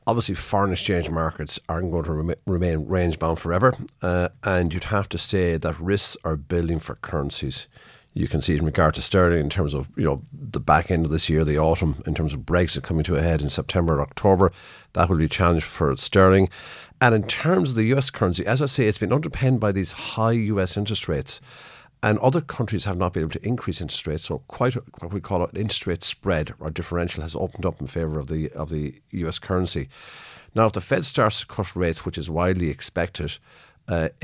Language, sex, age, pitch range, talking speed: English, male, 50-69, 80-105 Hz, 225 wpm